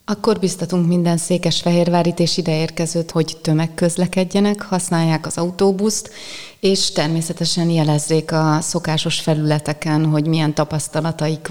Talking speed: 105 wpm